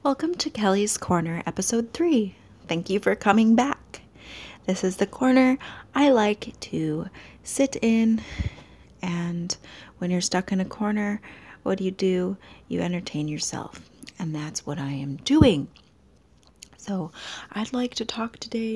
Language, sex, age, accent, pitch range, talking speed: English, female, 30-49, American, 170-250 Hz, 145 wpm